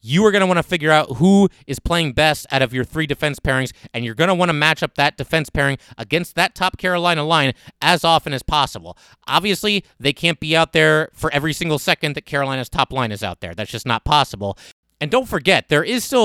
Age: 30-49